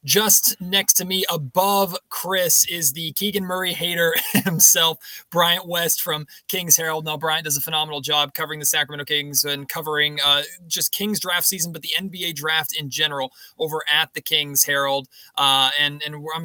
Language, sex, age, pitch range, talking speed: English, male, 20-39, 145-175 Hz, 180 wpm